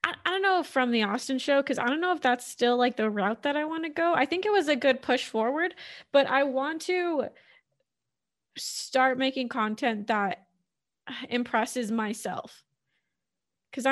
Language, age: English, 20-39